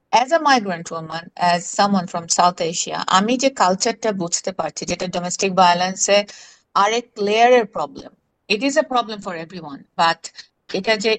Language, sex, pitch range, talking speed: Bengali, female, 175-225 Hz, 145 wpm